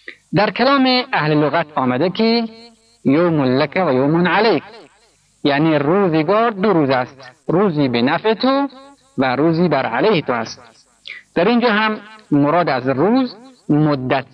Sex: male